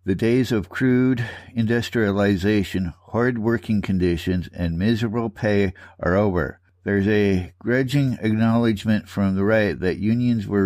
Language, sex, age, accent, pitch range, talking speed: English, male, 60-79, American, 95-115 Hz, 130 wpm